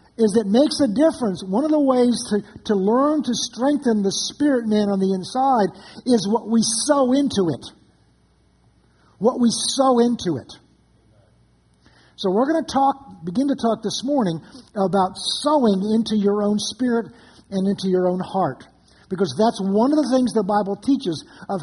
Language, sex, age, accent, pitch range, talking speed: English, male, 50-69, American, 190-250 Hz, 170 wpm